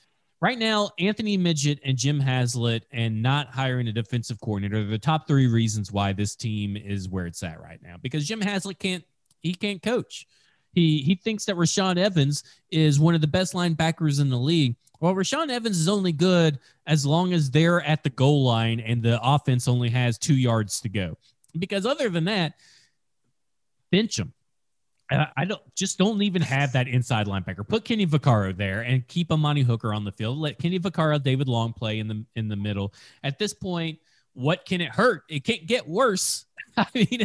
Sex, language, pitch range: male, English, 125-190 Hz